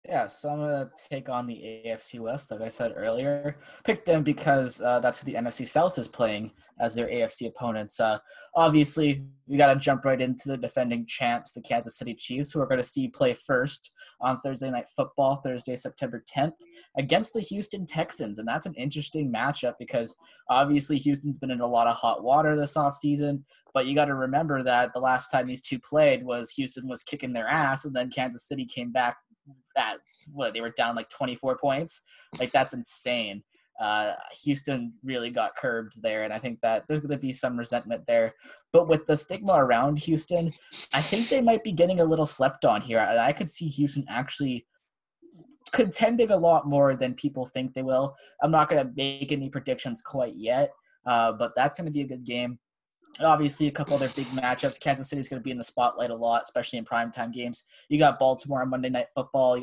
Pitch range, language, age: 120-150 Hz, English, 10-29